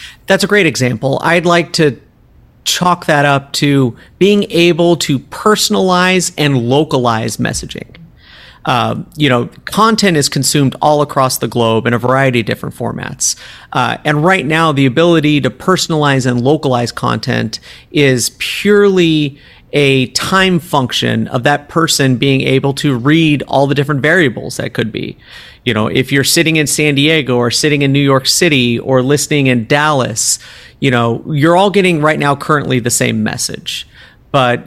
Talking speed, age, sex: 165 wpm, 40-59, male